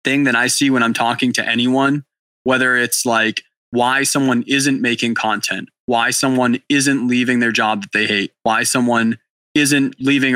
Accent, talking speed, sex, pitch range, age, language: American, 175 wpm, male, 115-135 Hz, 20-39, English